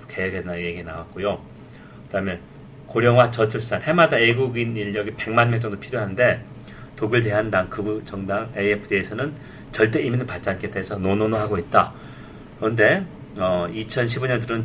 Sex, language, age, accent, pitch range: male, Korean, 40-59, native, 100-130 Hz